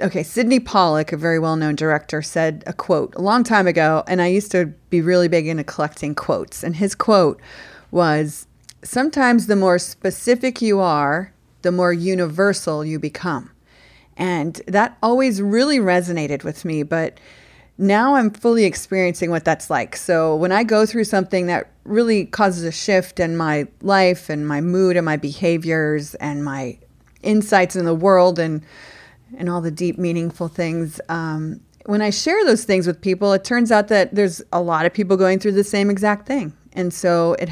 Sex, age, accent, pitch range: female, 40-59, American, 160-200 Hz